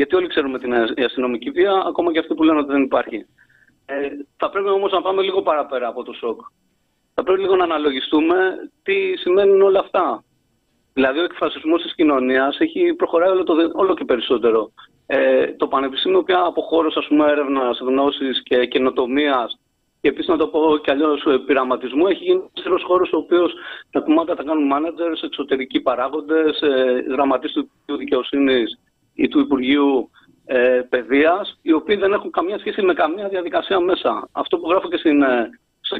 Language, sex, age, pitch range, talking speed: Greek, male, 40-59, 140-195 Hz, 160 wpm